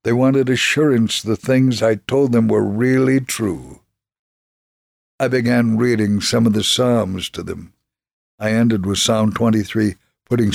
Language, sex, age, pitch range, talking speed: English, male, 60-79, 100-125 Hz, 150 wpm